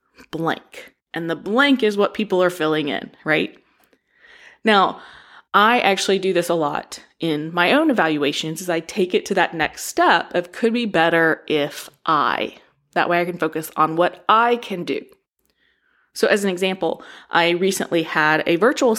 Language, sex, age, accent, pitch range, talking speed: English, female, 20-39, American, 170-240 Hz, 175 wpm